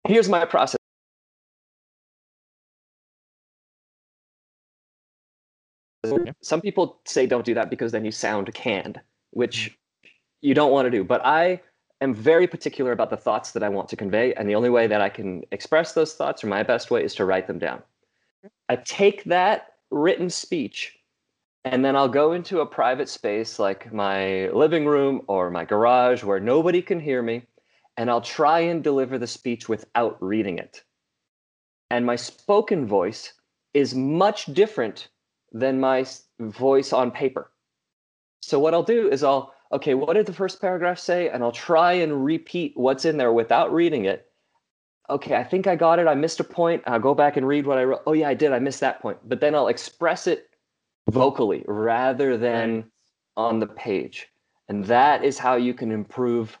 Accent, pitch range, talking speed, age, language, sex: American, 115-170 Hz, 175 wpm, 30-49, English, male